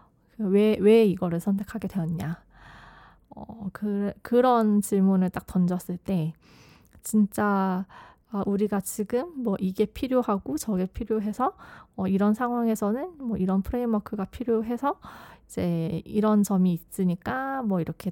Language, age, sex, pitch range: Korean, 20-39, female, 180-230 Hz